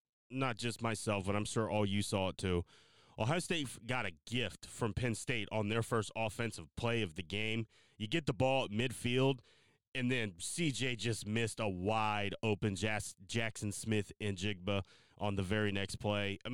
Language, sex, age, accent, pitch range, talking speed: English, male, 30-49, American, 105-125 Hz, 185 wpm